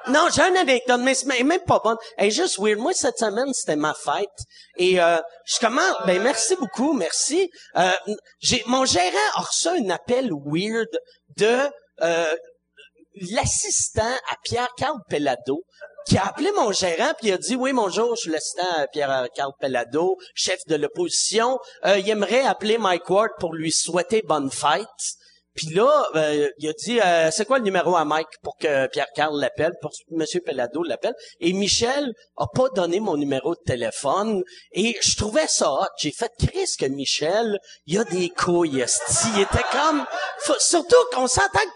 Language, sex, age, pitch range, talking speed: French, male, 40-59, 160-260 Hz, 180 wpm